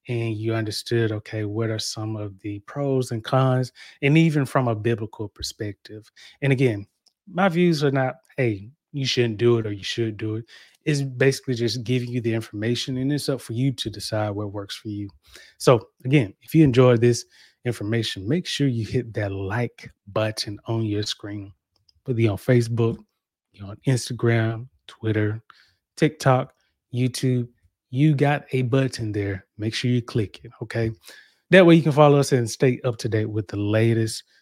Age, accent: 20-39, American